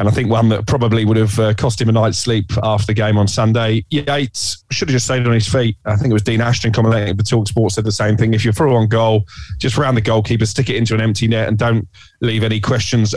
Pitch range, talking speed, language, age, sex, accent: 110-125 Hz, 280 wpm, English, 30-49, male, British